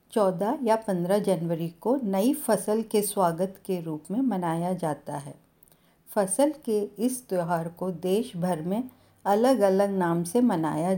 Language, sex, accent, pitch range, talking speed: Hindi, female, native, 175-215 Hz, 155 wpm